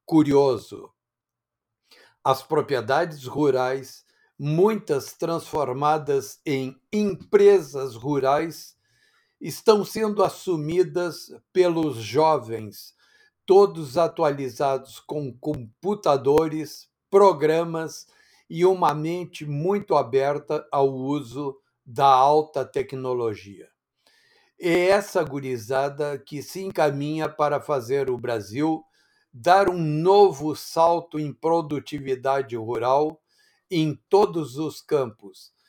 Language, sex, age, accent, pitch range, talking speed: Portuguese, male, 60-79, Brazilian, 140-175 Hz, 85 wpm